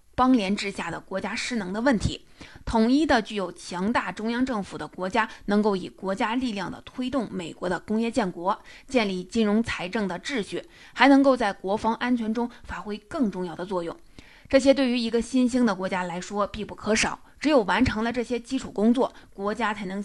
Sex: female